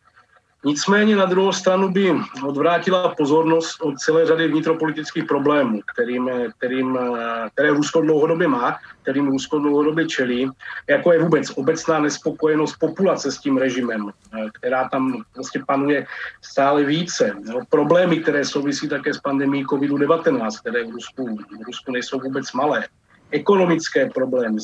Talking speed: 130 wpm